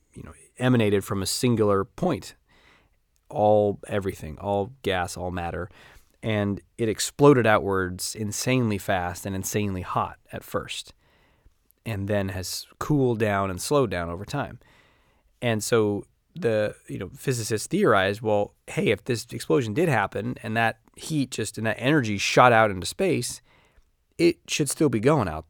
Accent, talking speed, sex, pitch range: American, 155 wpm, male, 100-125 Hz